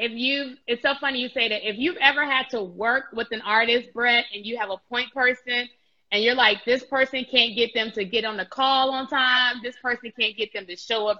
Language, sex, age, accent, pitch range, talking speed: English, female, 20-39, American, 220-265 Hz, 250 wpm